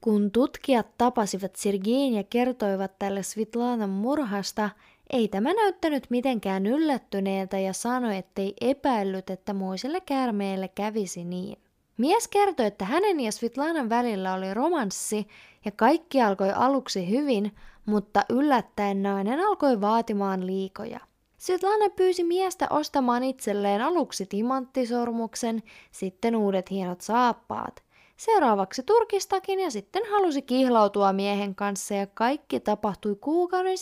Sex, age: female, 20-39